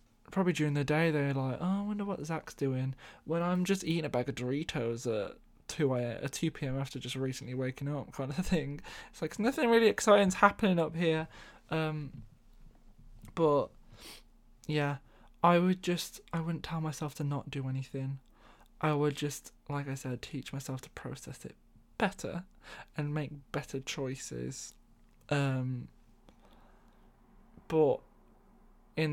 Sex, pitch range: male, 130-155 Hz